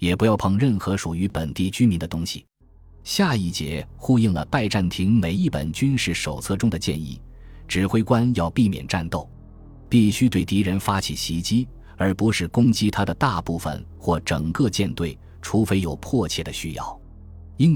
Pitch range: 85-110 Hz